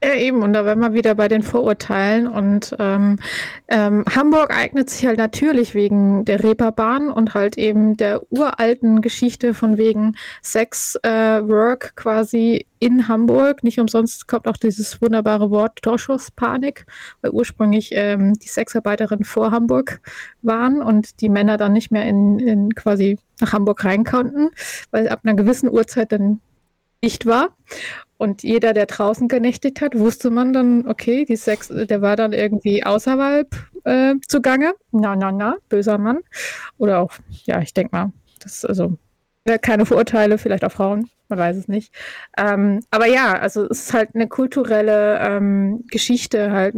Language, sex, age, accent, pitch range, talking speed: German, female, 20-39, German, 210-235 Hz, 160 wpm